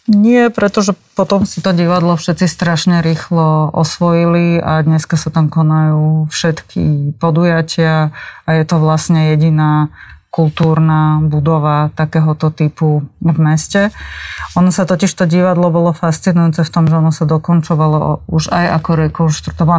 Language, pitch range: Slovak, 155-180 Hz